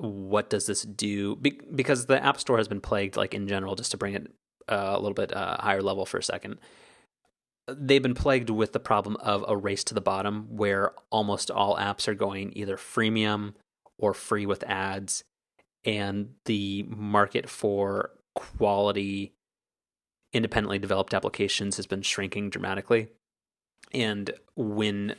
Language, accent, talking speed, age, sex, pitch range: English, American, 155 wpm, 30-49, male, 100-110 Hz